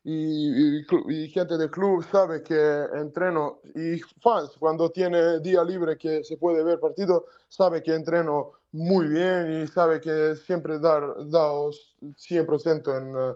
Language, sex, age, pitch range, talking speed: Spanish, male, 20-39, 160-195 Hz, 160 wpm